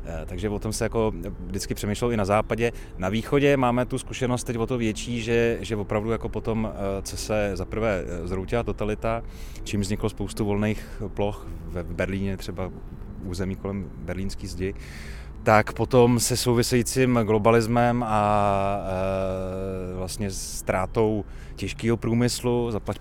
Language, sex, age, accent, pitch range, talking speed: Czech, male, 30-49, native, 95-115 Hz, 135 wpm